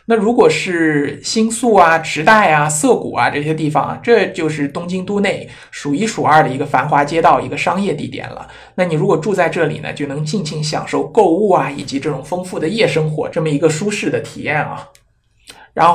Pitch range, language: 140-170 Hz, Chinese